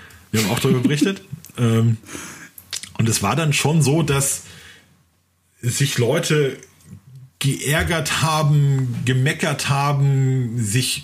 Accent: German